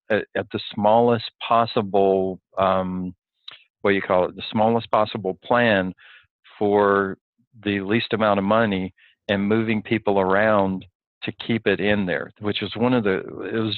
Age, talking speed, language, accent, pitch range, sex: 40-59, 155 wpm, English, American, 95-110 Hz, male